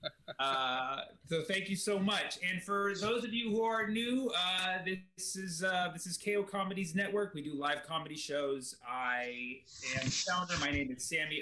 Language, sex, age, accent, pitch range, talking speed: English, male, 30-49, American, 150-215 Hz, 180 wpm